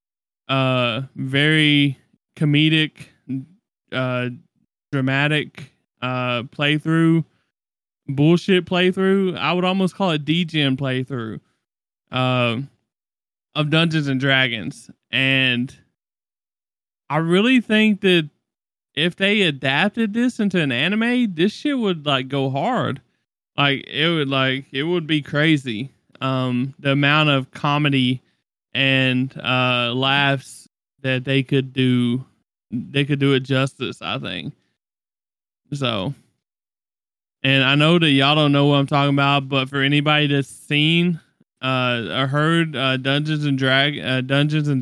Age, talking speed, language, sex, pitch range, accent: 20-39, 125 wpm, English, male, 130-155 Hz, American